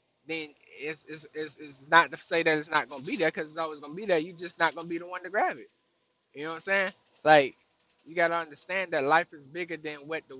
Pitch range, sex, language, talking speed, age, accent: 155-195 Hz, male, English, 290 wpm, 10-29, American